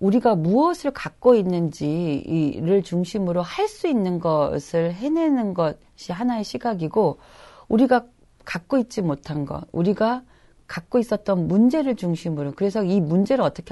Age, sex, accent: 40-59, female, native